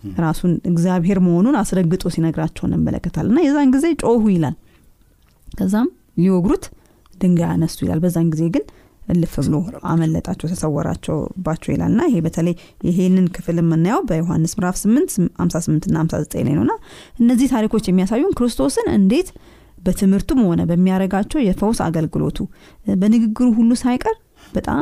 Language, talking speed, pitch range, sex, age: Amharic, 105 wpm, 165-210 Hz, female, 30-49